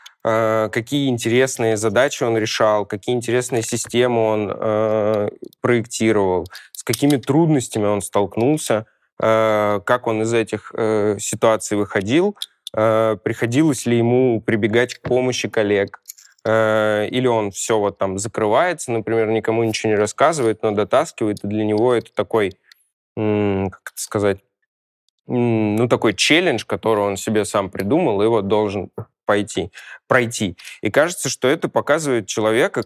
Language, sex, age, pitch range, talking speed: Russian, male, 20-39, 105-125 Hz, 135 wpm